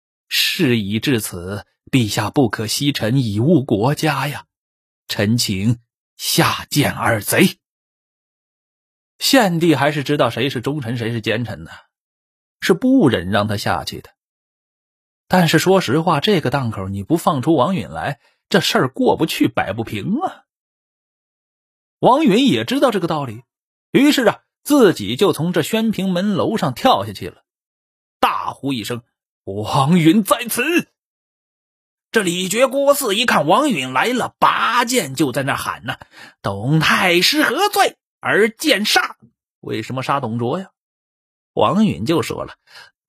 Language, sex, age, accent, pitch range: Chinese, male, 30-49, native, 115-185 Hz